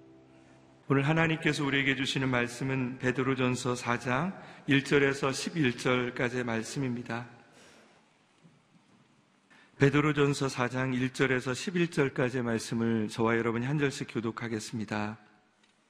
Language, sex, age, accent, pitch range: Korean, male, 40-59, native, 120-135 Hz